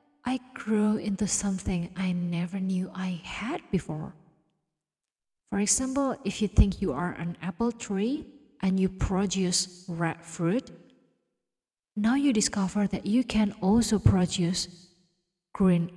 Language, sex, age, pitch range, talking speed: English, female, 30-49, 170-210 Hz, 130 wpm